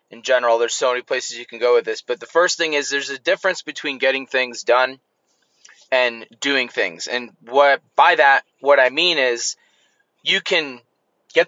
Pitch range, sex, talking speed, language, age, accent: 130-170 Hz, male, 195 wpm, English, 20-39, American